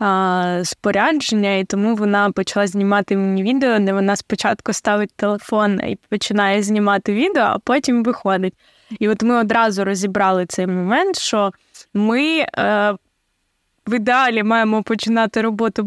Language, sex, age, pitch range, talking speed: Ukrainian, female, 20-39, 205-245 Hz, 130 wpm